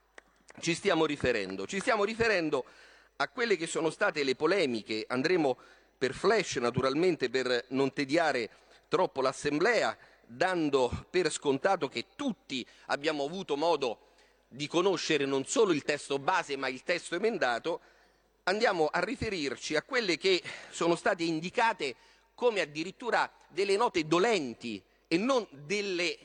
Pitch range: 145-245 Hz